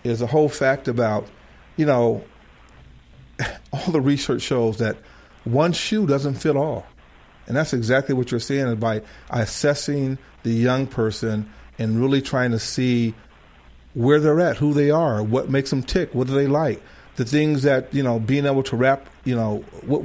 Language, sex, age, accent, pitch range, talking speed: English, male, 40-59, American, 110-140 Hz, 180 wpm